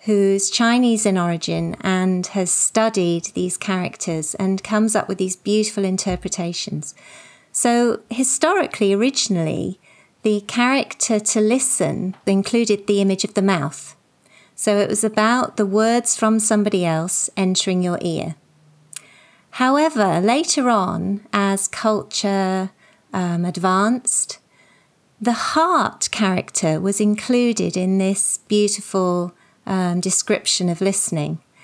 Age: 30-49